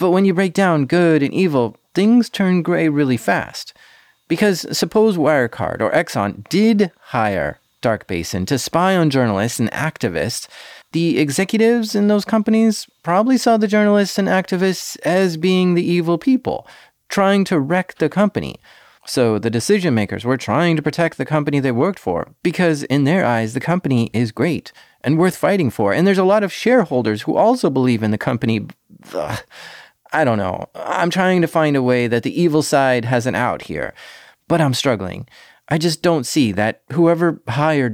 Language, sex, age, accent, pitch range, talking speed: English, male, 30-49, American, 125-180 Hz, 180 wpm